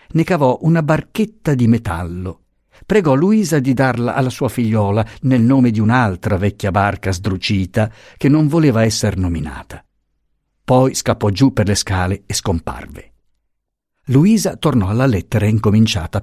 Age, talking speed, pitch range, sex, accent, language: 50-69, 140 wpm, 100-130 Hz, male, native, Italian